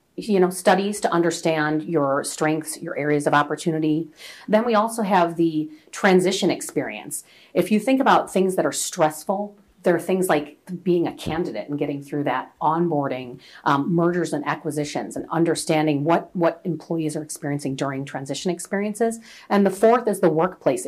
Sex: female